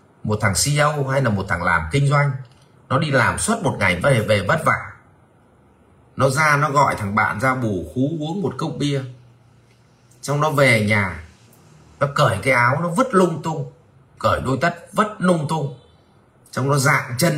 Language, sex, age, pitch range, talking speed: Vietnamese, male, 30-49, 105-140 Hz, 195 wpm